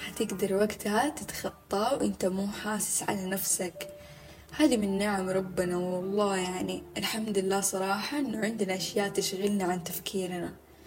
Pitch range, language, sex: 185-220 Hz, Arabic, female